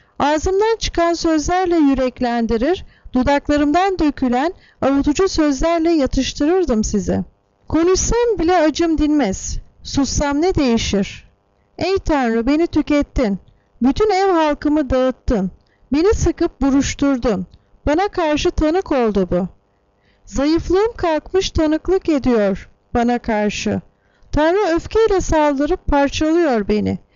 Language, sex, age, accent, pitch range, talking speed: Turkish, female, 40-59, native, 245-335 Hz, 95 wpm